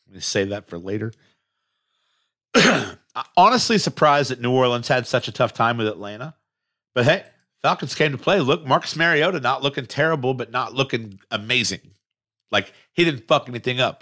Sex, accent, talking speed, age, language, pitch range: male, American, 170 wpm, 50-69, English, 105-130 Hz